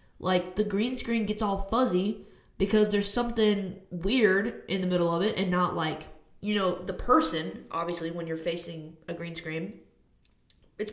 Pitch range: 170-240 Hz